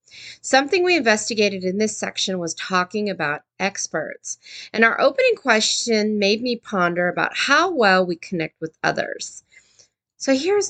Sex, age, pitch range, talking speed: female, 30-49, 180-260 Hz, 145 wpm